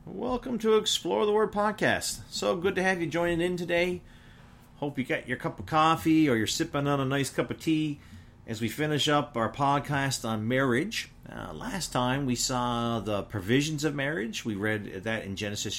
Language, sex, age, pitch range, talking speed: English, male, 40-59, 110-145 Hz, 200 wpm